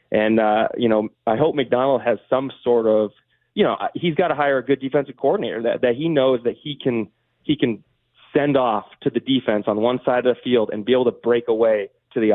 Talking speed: 240 wpm